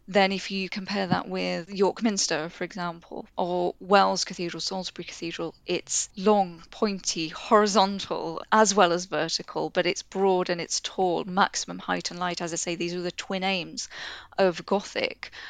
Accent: British